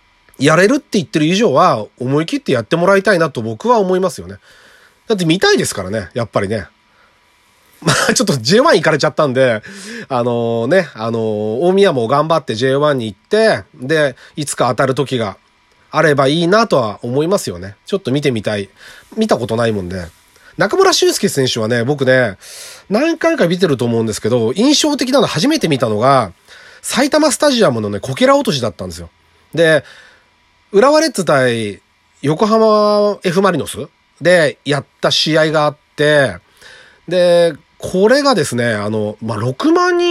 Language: Japanese